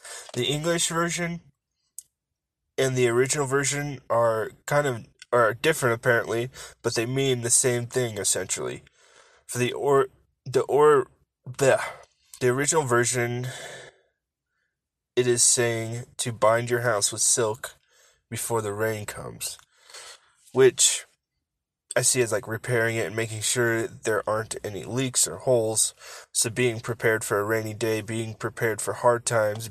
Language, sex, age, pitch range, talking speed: English, male, 20-39, 115-130 Hz, 145 wpm